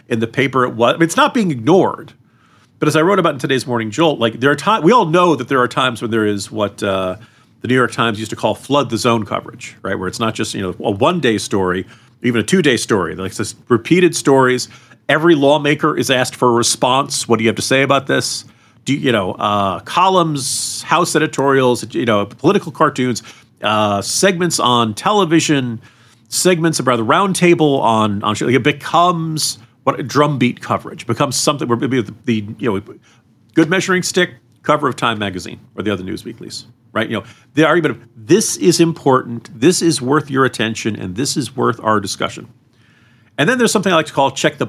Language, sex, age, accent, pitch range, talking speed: English, male, 40-59, American, 110-145 Hz, 215 wpm